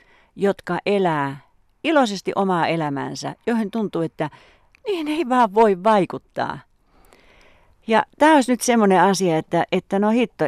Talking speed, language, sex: 130 wpm, Finnish, female